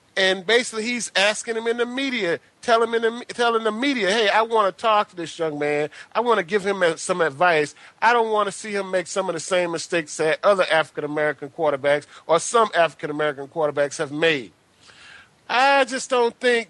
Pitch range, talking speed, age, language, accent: 160-225 Hz, 200 wpm, 30-49, English, American